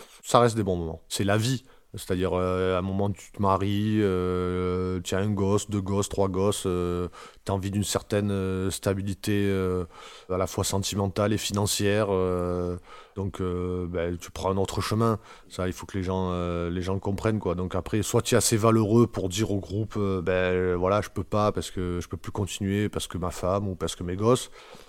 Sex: male